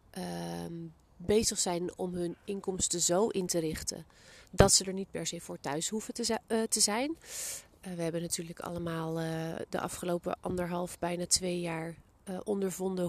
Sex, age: female, 30-49